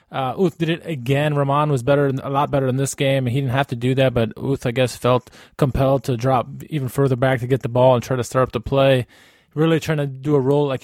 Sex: male